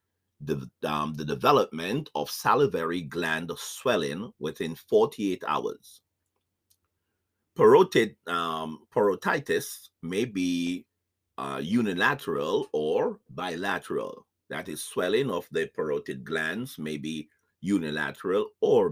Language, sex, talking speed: English, male, 95 wpm